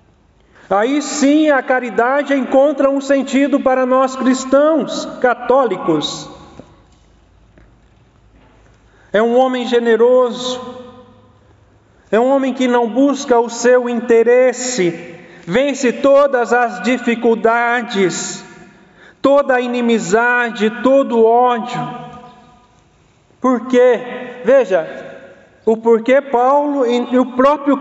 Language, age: Portuguese, 40-59